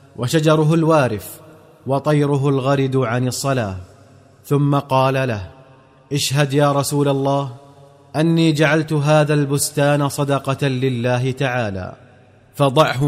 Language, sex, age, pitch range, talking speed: Arabic, male, 30-49, 130-150 Hz, 95 wpm